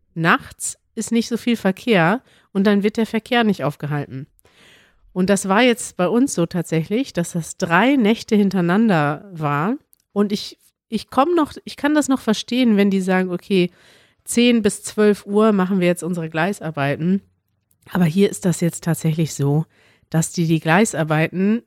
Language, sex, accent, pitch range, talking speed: German, female, German, 165-230 Hz, 170 wpm